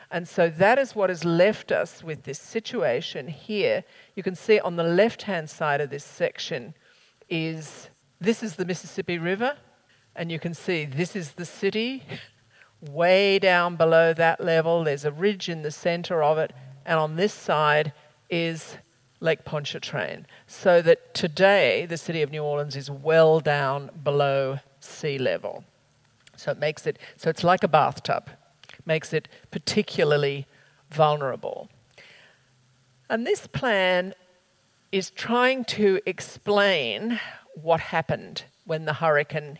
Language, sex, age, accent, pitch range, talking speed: English, female, 50-69, Australian, 150-195 Hz, 145 wpm